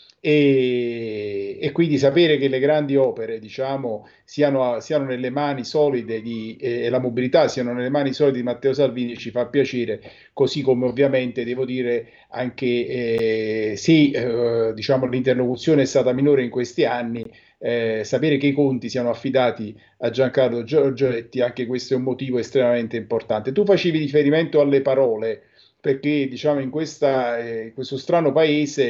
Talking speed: 160 wpm